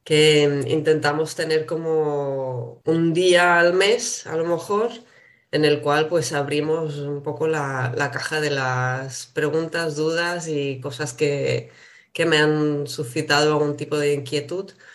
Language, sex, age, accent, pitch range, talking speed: Spanish, female, 20-39, Spanish, 145-175 Hz, 145 wpm